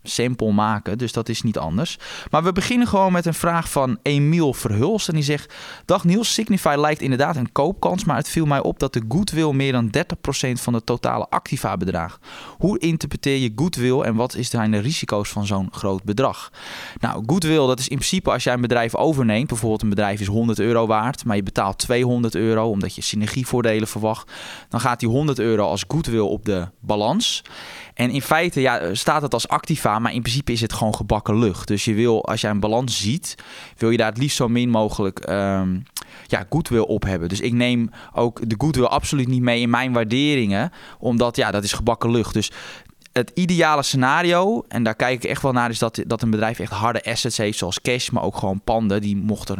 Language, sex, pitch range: Dutch, male, 105-140 Hz